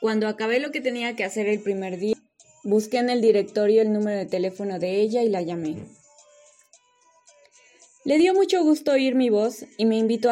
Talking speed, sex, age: 190 wpm, female, 20-39